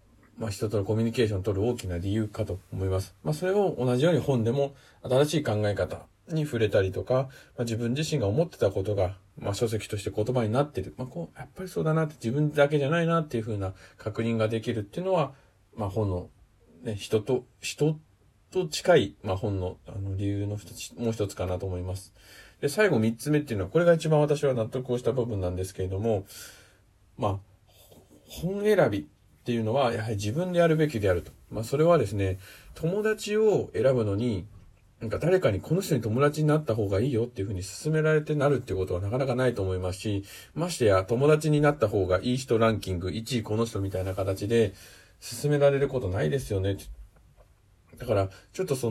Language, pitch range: Japanese, 100-140 Hz